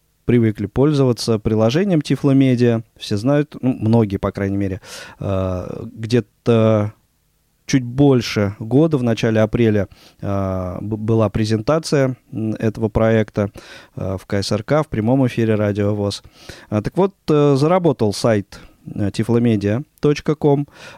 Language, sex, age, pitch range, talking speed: Russian, male, 20-39, 105-135 Hz, 95 wpm